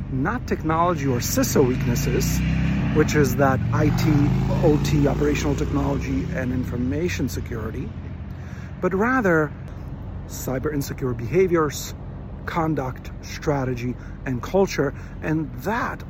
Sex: male